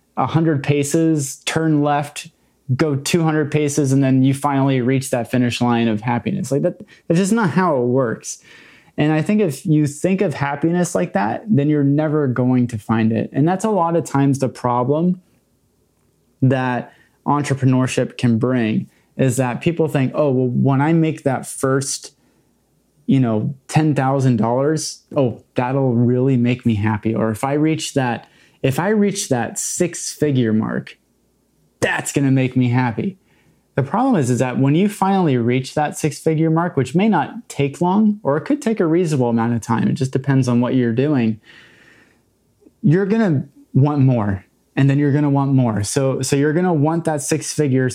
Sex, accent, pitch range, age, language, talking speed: male, American, 125-155 Hz, 20-39, English, 180 wpm